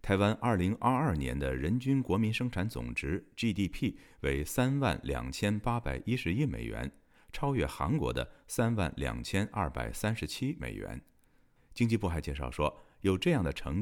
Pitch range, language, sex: 70-110 Hz, Chinese, male